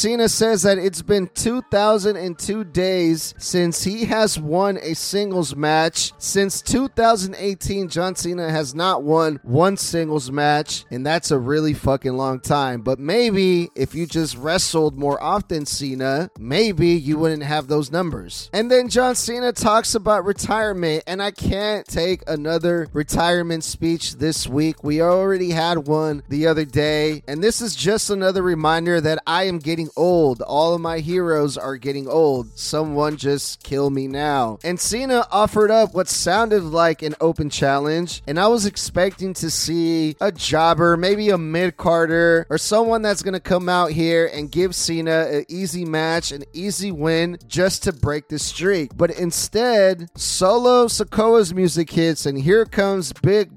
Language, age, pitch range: English, 30-49, 150-190 Hz